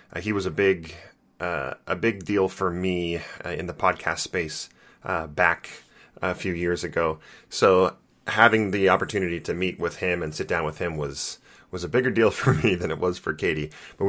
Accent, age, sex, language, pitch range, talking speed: American, 30-49, male, English, 85-110 Hz, 205 wpm